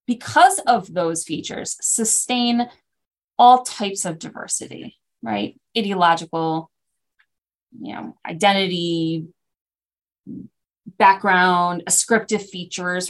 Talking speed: 80 wpm